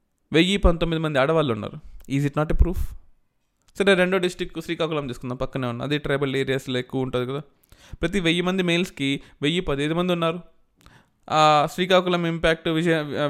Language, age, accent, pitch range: Telugu, 20-39, native, 130-165 Hz